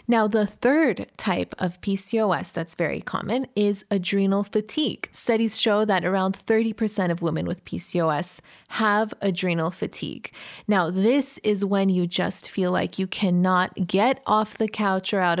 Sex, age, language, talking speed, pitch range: female, 20-39, English, 155 wpm, 185-230 Hz